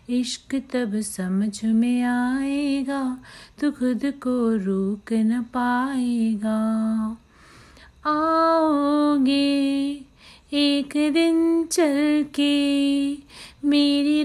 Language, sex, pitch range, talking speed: Hindi, female, 245-305 Hz, 70 wpm